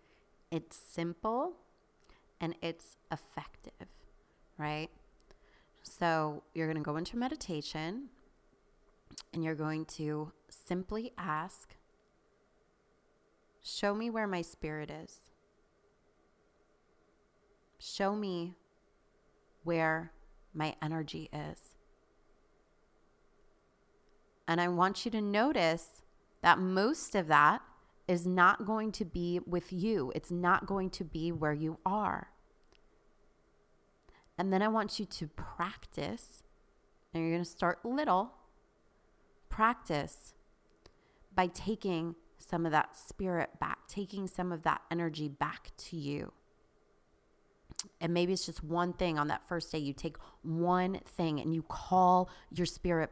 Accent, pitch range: American, 160-190 Hz